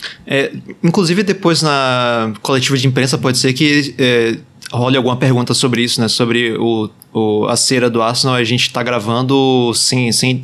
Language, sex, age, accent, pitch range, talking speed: Portuguese, male, 20-39, Brazilian, 115-140 Hz, 170 wpm